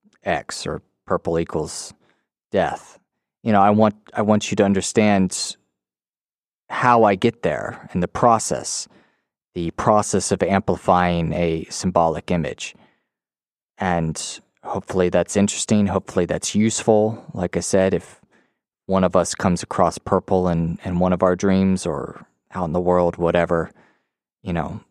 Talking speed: 140 wpm